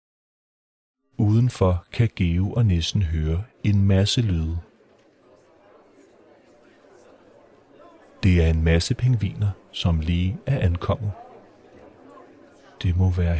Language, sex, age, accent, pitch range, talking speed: Danish, male, 30-49, native, 90-115 Hz, 95 wpm